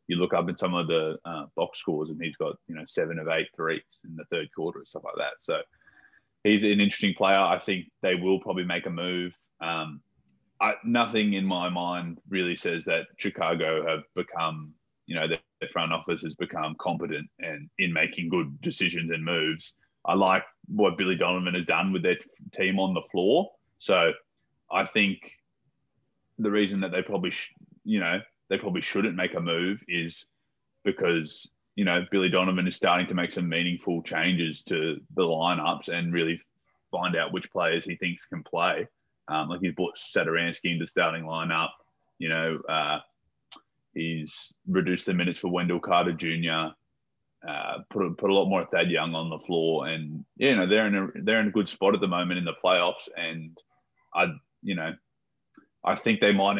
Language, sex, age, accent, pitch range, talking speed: English, male, 20-39, Australian, 80-95 Hz, 190 wpm